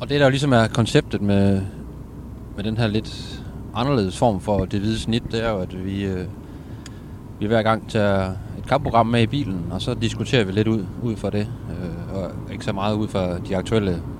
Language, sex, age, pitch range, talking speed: Danish, male, 20-39, 100-125 Hz, 215 wpm